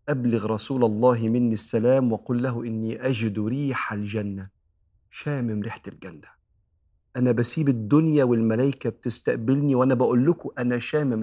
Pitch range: 110-135 Hz